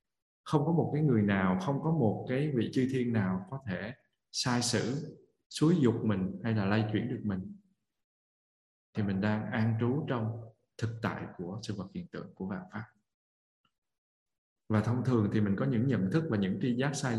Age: 20-39